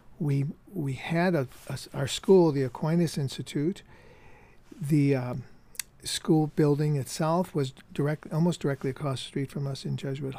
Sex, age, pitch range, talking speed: male, 50-69, 135-160 Hz, 150 wpm